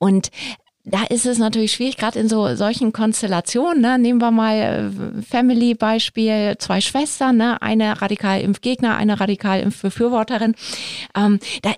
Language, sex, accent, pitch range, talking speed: German, female, German, 200-240 Hz, 140 wpm